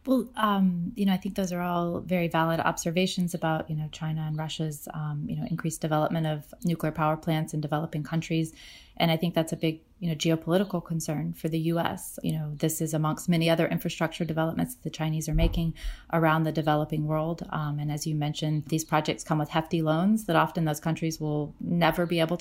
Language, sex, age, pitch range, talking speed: English, female, 30-49, 150-170 Hz, 215 wpm